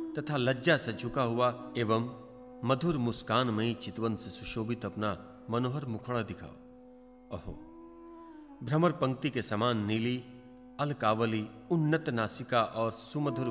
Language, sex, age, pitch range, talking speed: Hindi, male, 40-59, 115-165 Hz, 105 wpm